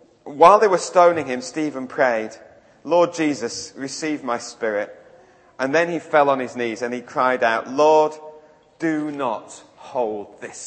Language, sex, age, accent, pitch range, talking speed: English, male, 30-49, British, 185-245 Hz, 155 wpm